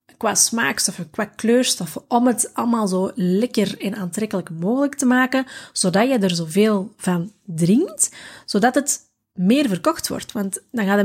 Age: 30-49